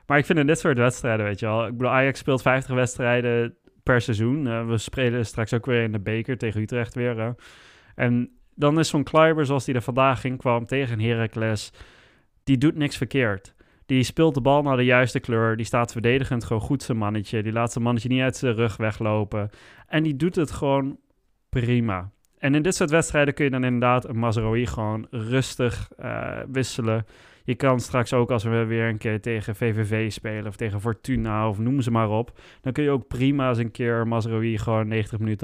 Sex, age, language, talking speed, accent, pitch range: male, 20-39, Dutch, 210 wpm, Dutch, 110-130 Hz